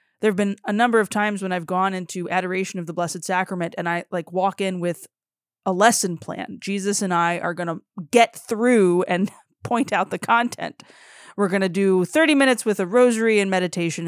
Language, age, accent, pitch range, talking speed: English, 20-39, American, 175-215 Hz, 210 wpm